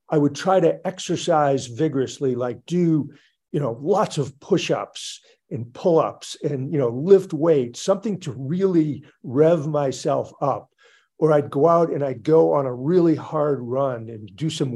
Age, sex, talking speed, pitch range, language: 50-69, male, 165 wpm, 135-165 Hz, English